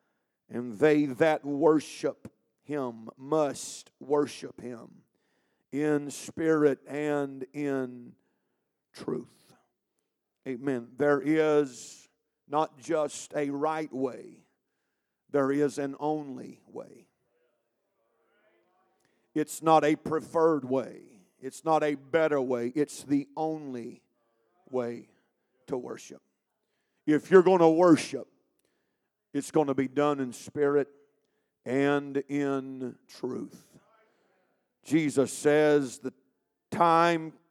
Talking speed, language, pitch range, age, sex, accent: 100 wpm, English, 130-155 Hz, 50-69, male, American